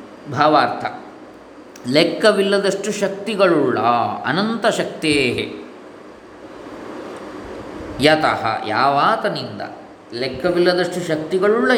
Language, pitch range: Kannada, 140-210 Hz